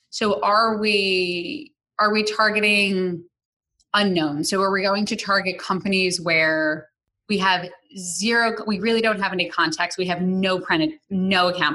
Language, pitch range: English, 170-205 Hz